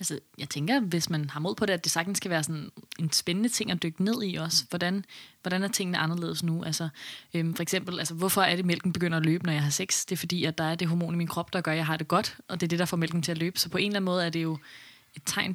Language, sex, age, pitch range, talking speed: Danish, female, 20-39, 170-200 Hz, 330 wpm